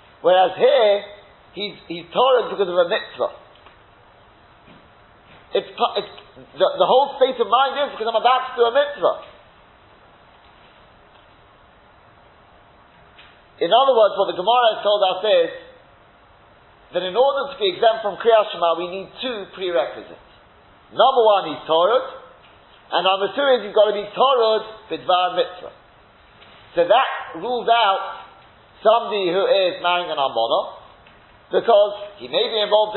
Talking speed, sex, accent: 145 wpm, male, British